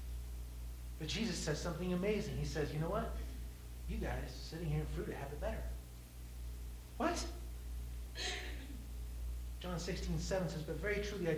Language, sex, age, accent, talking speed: English, male, 30-49, American, 150 wpm